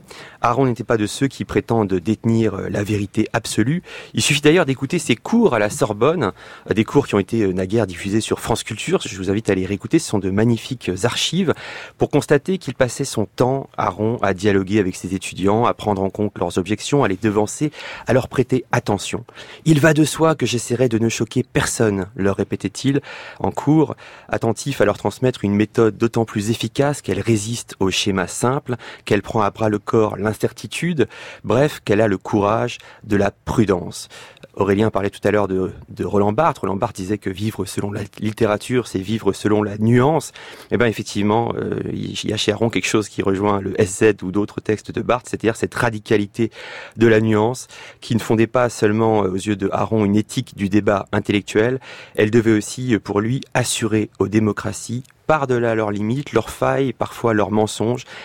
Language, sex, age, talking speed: French, male, 30-49, 195 wpm